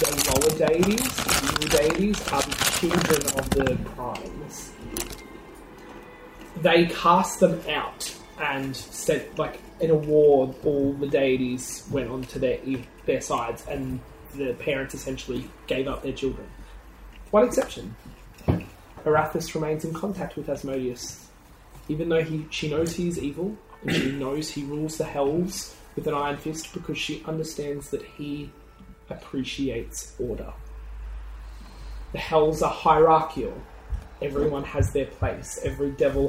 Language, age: English, 20-39